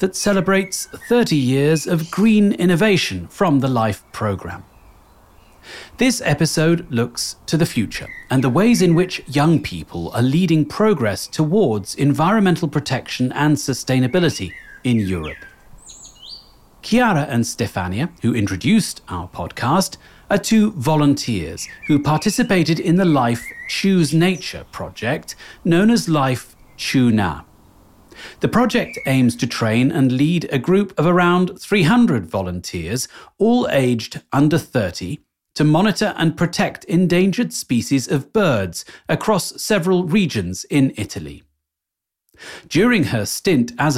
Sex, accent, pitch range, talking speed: male, British, 115-185 Hz, 125 wpm